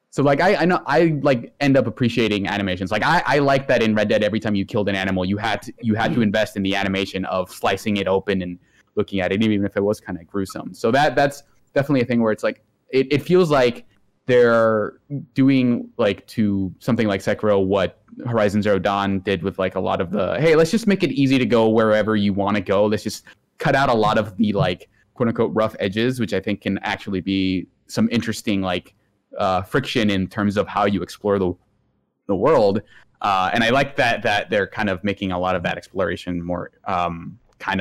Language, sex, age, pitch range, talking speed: English, male, 20-39, 100-140 Hz, 230 wpm